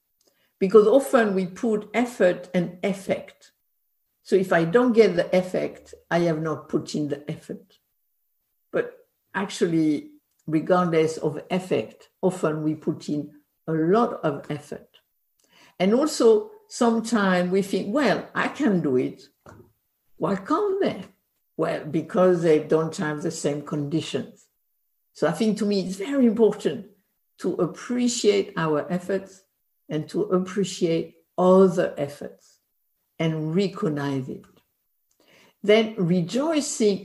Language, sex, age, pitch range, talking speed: English, female, 60-79, 165-220 Hz, 125 wpm